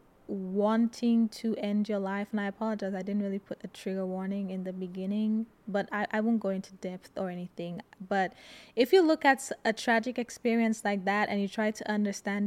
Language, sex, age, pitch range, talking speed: English, female, 20-39, 205-245 Hz, 200 wpm